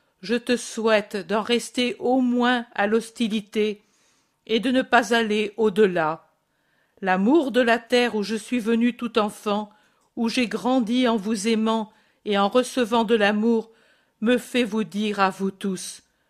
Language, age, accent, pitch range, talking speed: French, 50-69, French, 200-235 Hz, 160 wpm